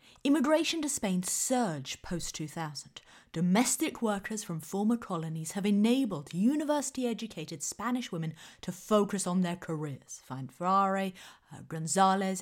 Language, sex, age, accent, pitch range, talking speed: English, female, 30-49, British, 160-235 Hz, 110 wpm